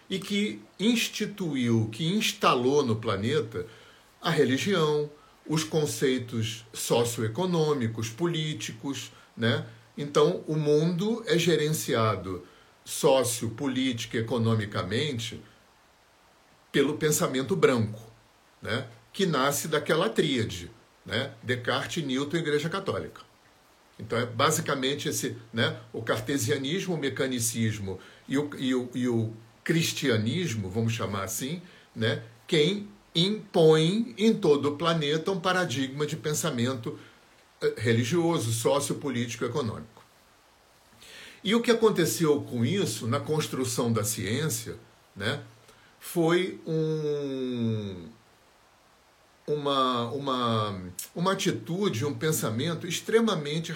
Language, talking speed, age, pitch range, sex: Portuguese, 100 wpm, 50-69, 115-165 Hz, male